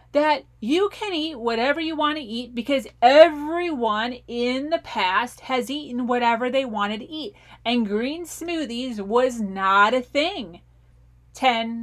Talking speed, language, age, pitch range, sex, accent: 145 wpm, English, 30-49, 215-305 Hz, female, American